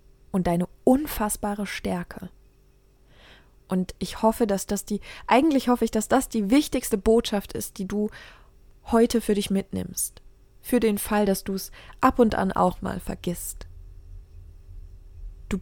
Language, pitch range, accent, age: German, 180-230 Hz, German, 20-39